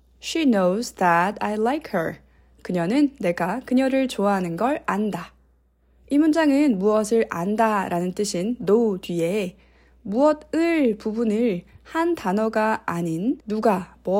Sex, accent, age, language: female, native, 20-39, Korean